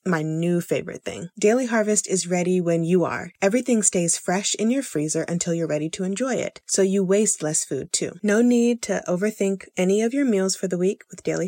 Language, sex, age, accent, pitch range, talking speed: English, female, 30-49, American, 170-210 Hz, 220 wpm